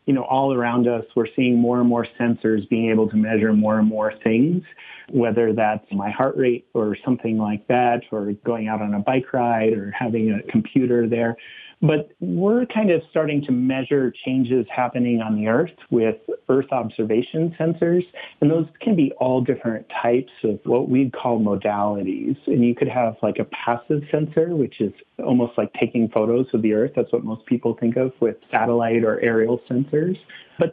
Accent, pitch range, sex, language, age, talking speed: American, 110-135 Hz, male, English, 40-59, 190 wpm